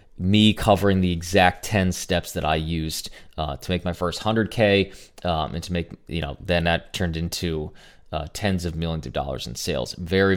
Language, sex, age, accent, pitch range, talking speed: English, male, 20-39, American, 85-100 Hz, 195 wpm